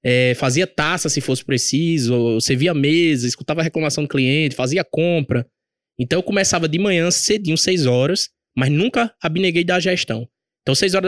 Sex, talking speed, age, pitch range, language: male, 185 wpm, 20-39, 135-175 Hz, Portuguese